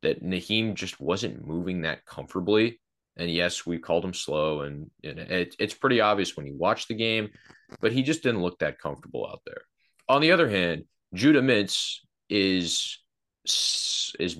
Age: 30-49